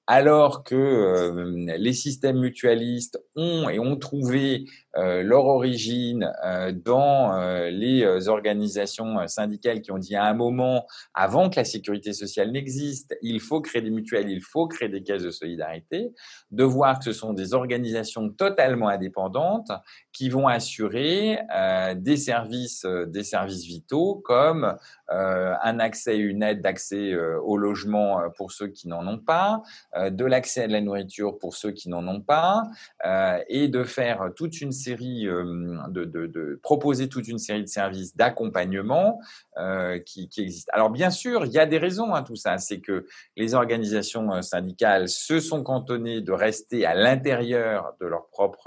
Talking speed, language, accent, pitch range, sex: 160 wpm, French, French, 100-130 Hz, male